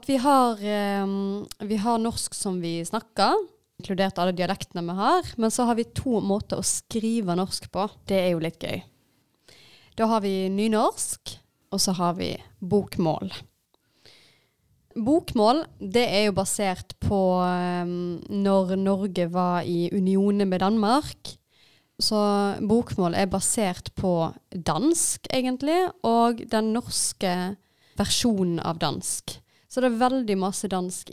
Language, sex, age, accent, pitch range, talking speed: English, female, 20-39, Swedish, 180-235 Hz, 140 wpm